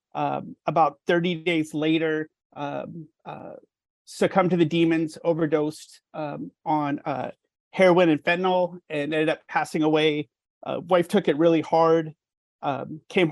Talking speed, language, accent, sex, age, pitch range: 140 wpm, English, American, male, 30-49, 155-175 Hz